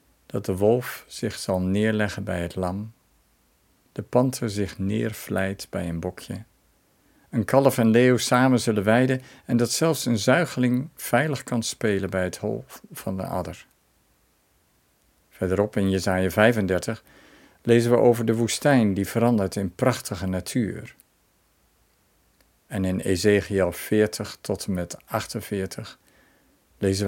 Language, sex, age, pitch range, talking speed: Dutch, male, 50-69, 95-115 Hz, 135 wpm